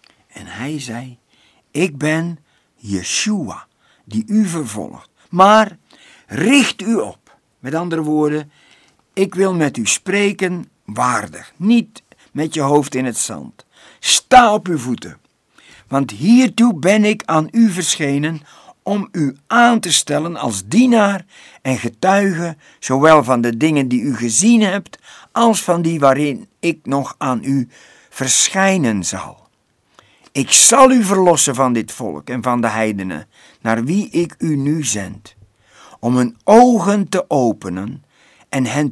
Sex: male